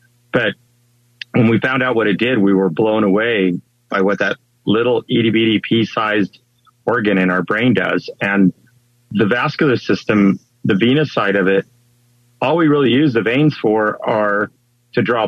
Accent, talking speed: American, 165 wpm